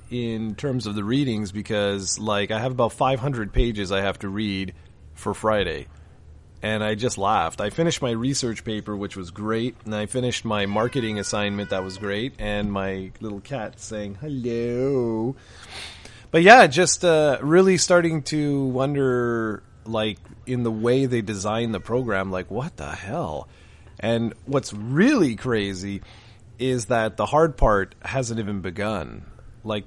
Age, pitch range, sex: 30-49, 105-130 Hz, male